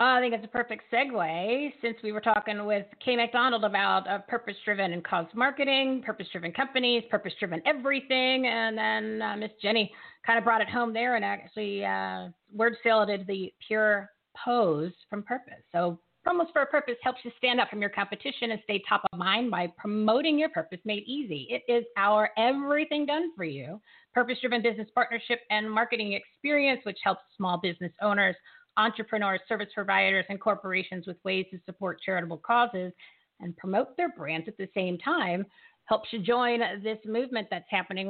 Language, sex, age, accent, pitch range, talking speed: English, female, 40-59, American, 190-240 Hz, 180 wpm